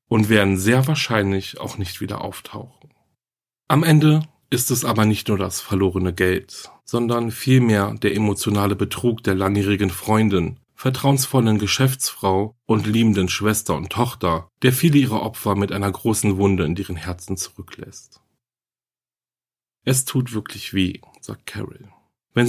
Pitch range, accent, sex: 100-120 Hz, German, male